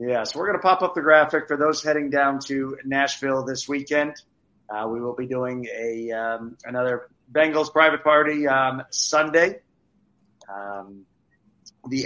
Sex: male